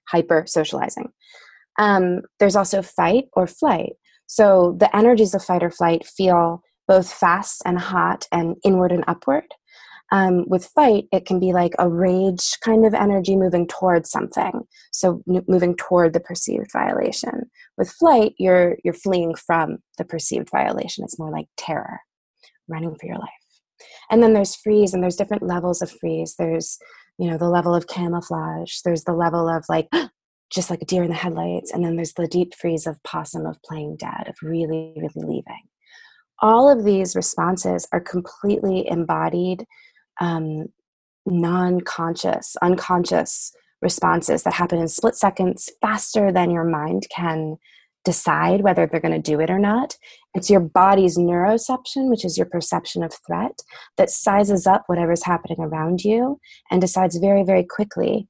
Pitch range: 170-200 Hz